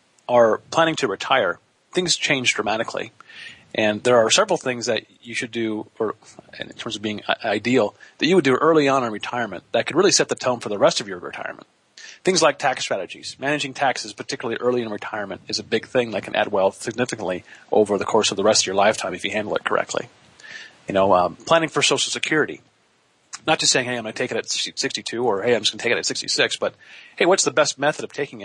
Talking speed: 235 wpm